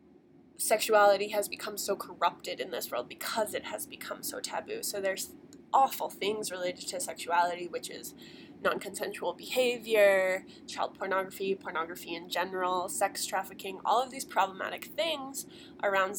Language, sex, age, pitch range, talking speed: English, female, 20-39, 195-275 Hz, 140 wpm